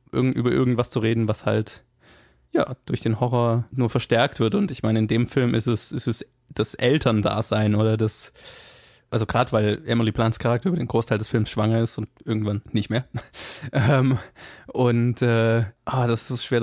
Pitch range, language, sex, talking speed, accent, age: 110-125 Hz, German, male, 185 wpm, German, 20-39